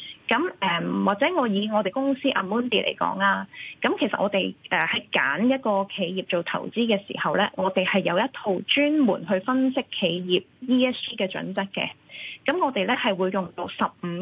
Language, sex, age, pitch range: Chinese, female, 20-39, 190-255 Hz